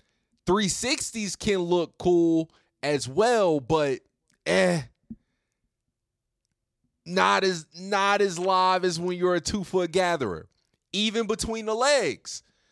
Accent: American